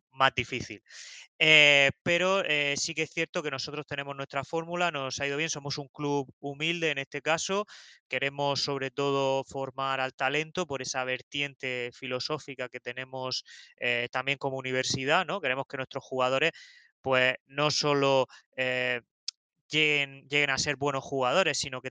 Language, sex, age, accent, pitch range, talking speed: Spanish, male, 20-39, Spanish, 125-140 Hz, 160 wpm